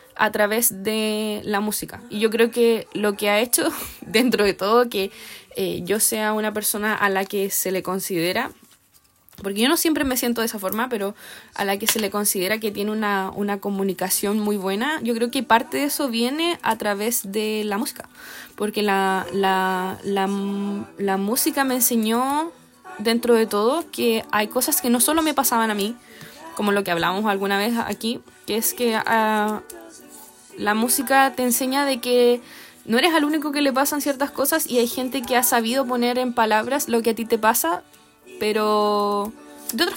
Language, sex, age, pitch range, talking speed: Spanish, female, 20-39, 205-260 Hz, 195 wpm